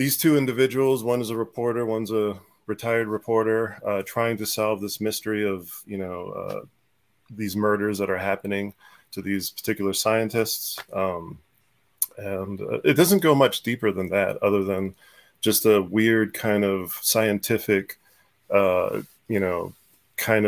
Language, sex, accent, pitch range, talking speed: English, male, American, 100-115 Hz, 150 wpm